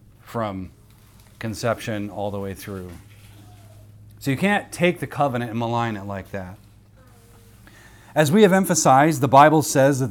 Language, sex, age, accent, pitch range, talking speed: English, male, 30-49, American, 110-145 Hz, 150 wpm